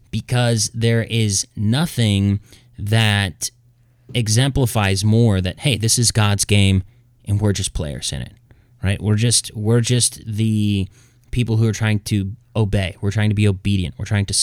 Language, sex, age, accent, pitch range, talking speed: English, male, 20-39, American, 105-120 Hz, 160 wpm